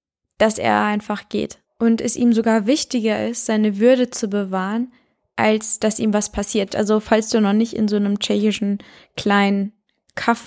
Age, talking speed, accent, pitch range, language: 10-29, 170 wpm, German, 210-235 Hz, German